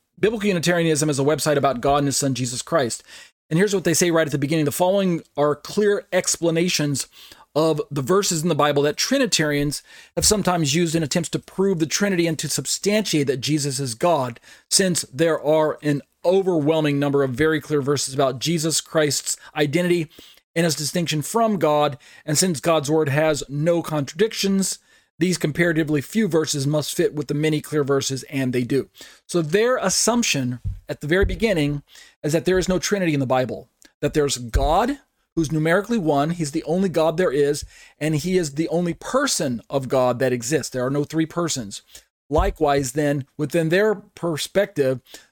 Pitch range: 145-175 Hz